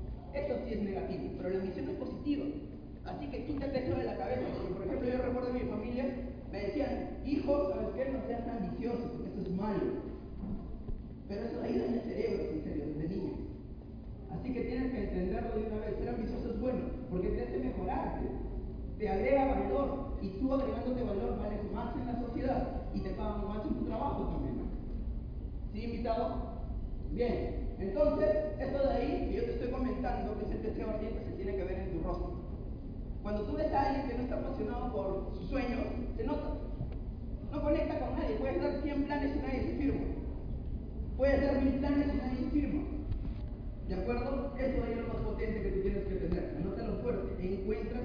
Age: 30-49